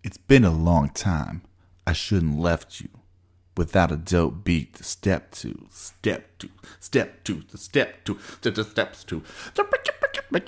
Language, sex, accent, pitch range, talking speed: English, male, American, 85-105 Hz, 160 wpm